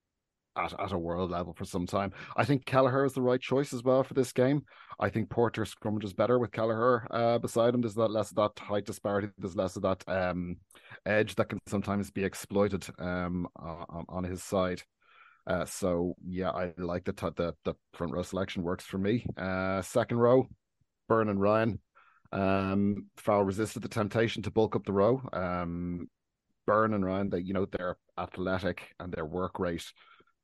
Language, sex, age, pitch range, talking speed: English, male, 30-49, 90-105 Hz, 190 wpm